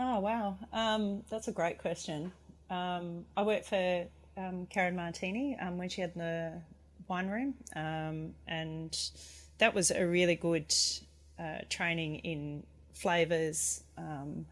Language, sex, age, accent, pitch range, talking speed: English, female, 30-49, Australian, 150-175 Hz, 130 wpm